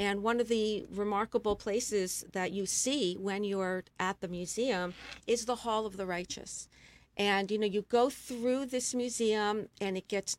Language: English